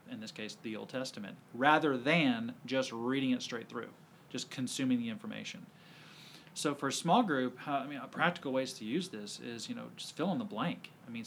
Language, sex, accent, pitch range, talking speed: English, male, American, 135-185 Hz, 220 wpm